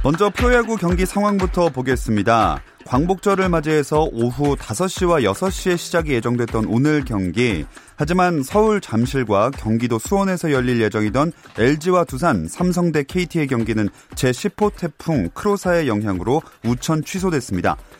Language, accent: Korean, native